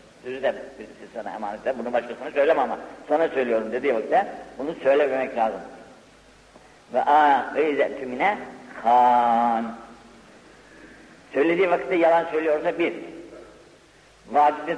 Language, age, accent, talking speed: Turkish, 60-79, native, 95 wpm